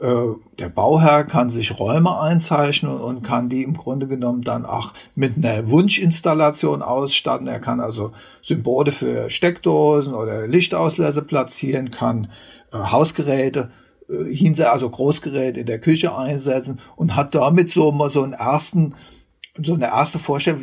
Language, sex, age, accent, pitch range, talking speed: German, male, 50-69, German, 135-175 Hz, 135 wpm